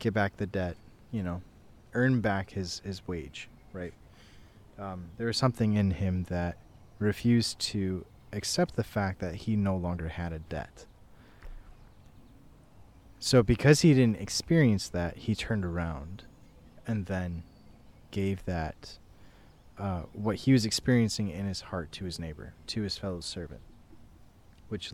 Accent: American